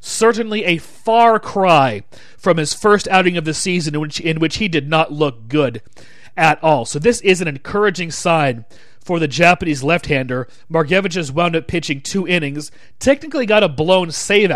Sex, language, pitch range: male, English, 145-185 Hz